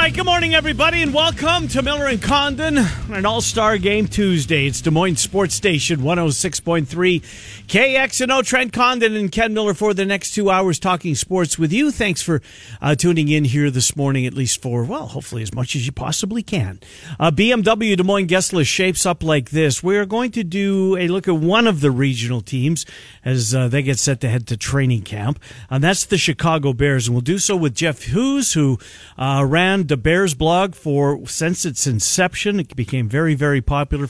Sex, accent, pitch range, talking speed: male, American, 125-190 Hz, 200 wpm